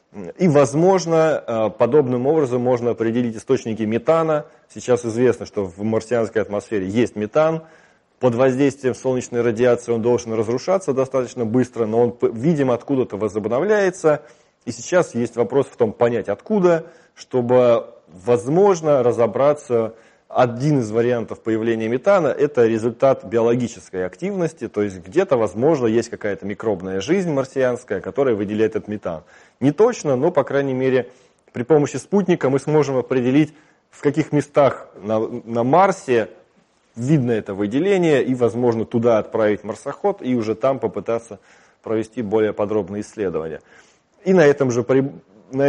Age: 20-39